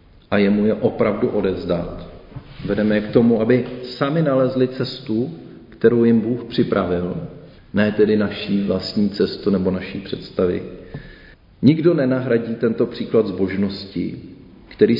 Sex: male